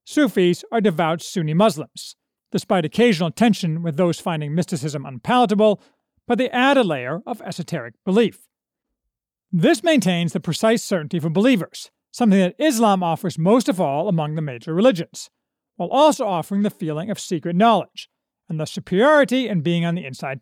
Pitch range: 170-235 Hz